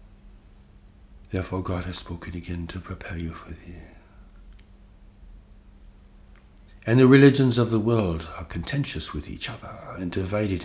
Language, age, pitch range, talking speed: English, 60-79, 85-100 Hz, 130 wpm